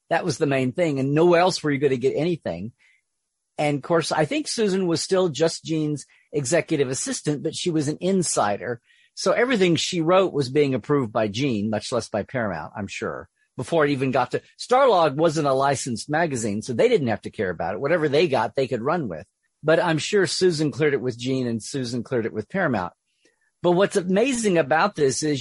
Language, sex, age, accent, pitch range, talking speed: English, male, 50-69, American, 130-180 Hz, 215 wpm